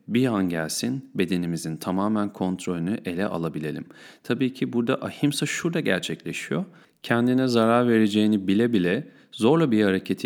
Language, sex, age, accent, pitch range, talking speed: Turkish, male, 40-59, native, 105-135 Hz, 130 wpm